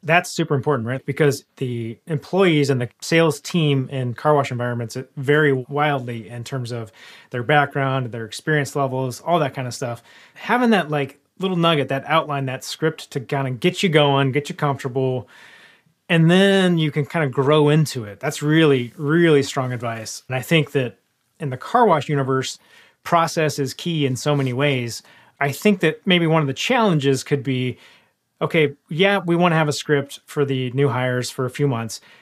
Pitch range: 130-165 Hz